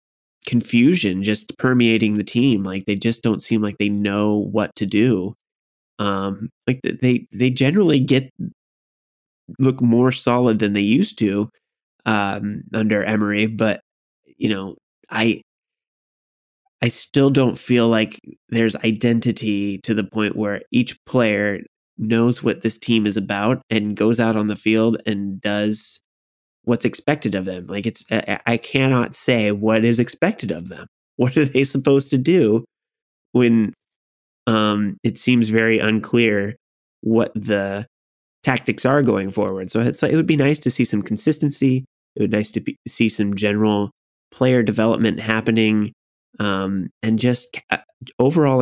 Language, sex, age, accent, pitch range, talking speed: English, male, 20-39, American, 105-125 Hz, 150 wpm